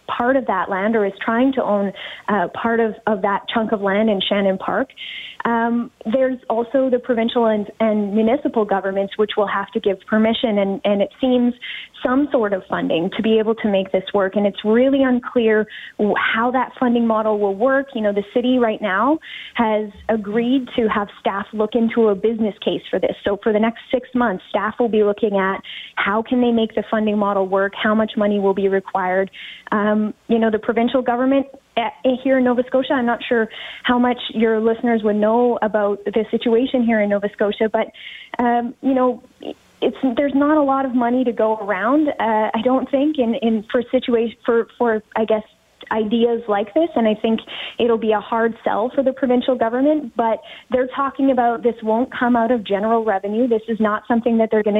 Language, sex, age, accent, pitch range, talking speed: English, female, 20-39, American, 215-250 Hz, 205 wpm